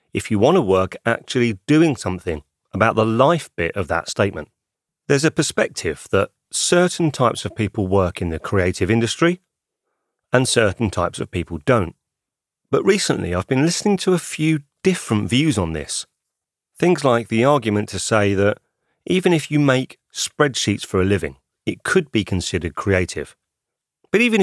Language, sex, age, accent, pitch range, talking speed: English, male, 40-59, British, 95-150 Hz, 165 wpm